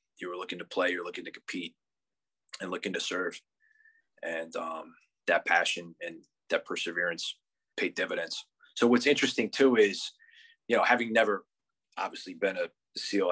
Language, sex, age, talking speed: English, male, 30-49, 160 wpm